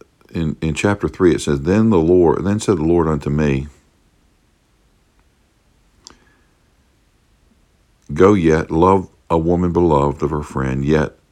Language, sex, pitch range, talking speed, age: English, male, 75-90 Hz, 135 wpm, 60-79